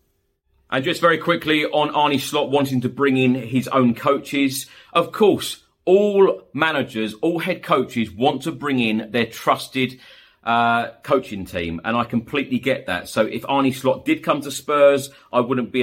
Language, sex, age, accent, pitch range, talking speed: English, male, 30-49, British, 110-130 Hz, 175 wpm